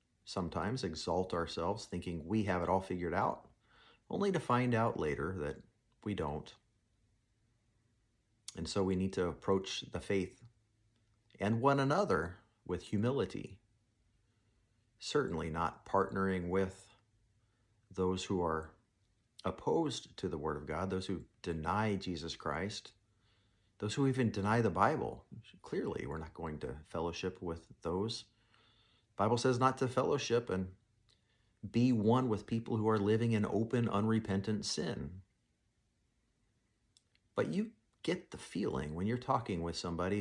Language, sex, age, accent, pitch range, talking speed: English, male, 40-59, American, 95-115 Hz, 135 wpm